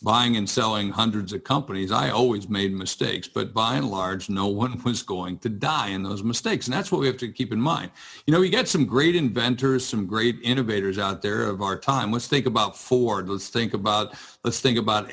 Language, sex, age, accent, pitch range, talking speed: English, male, 50-69, American, 105-130 Hz, 225 wpm